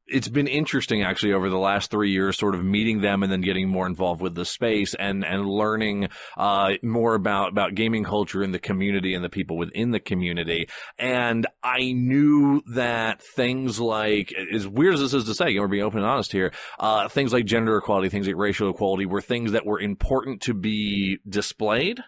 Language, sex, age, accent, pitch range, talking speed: English, male, 30-49, American, 95-115 Hz, 205 wpm